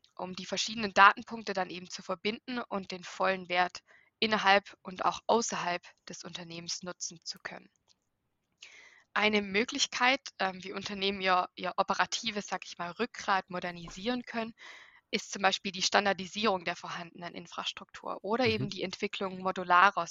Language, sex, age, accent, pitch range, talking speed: German, female, 20-39, German, 185-215 Hz, 140 wpm